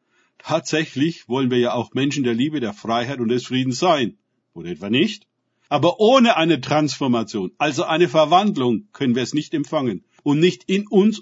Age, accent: 50-69, German